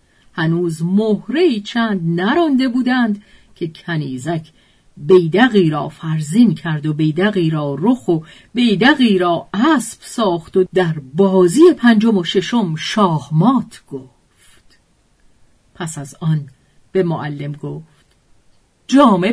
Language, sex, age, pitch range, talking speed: Persian, female, 40-59, 165-235 Hz, 110 wpm